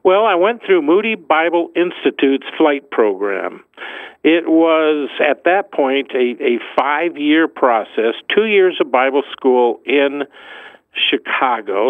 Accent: American